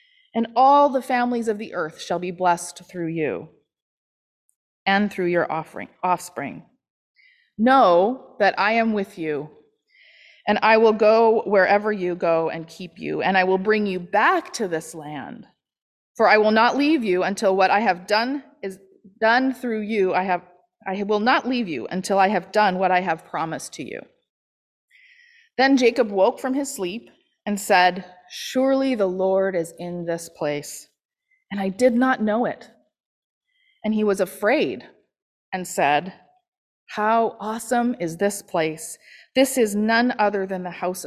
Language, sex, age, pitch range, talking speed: English, female, 30-49, 180-250 Hz, 165 wpm